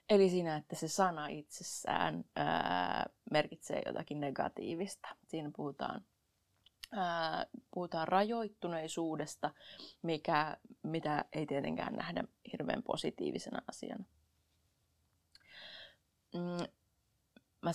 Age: 20-39